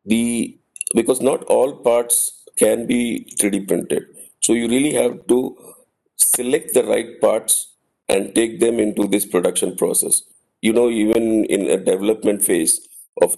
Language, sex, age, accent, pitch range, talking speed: English, male, 50-69, Indian, 100-150 Hz, 150 wpm